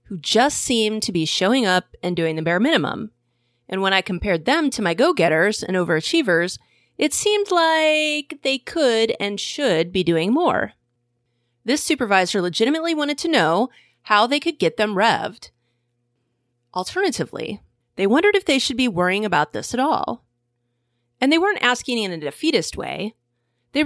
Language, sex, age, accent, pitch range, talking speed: English, female, 30-49, American, 155-255 Hz, 165 wpm